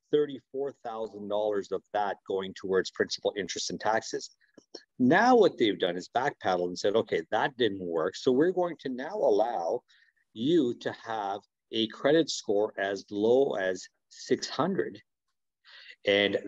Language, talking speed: English, 140 wpm